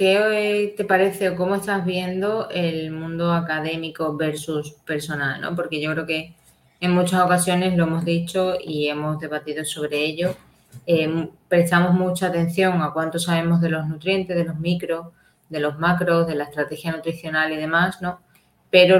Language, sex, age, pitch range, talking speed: Spanish, female, 20-39, 160-180 Hz, 165 wpm